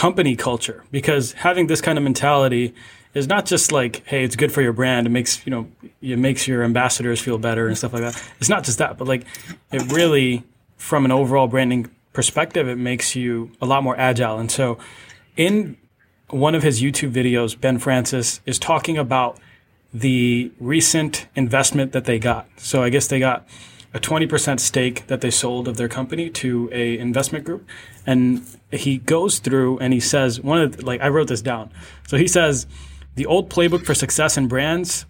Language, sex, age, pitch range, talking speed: English, male, 20-39, 125-150 Hz, 195 wpm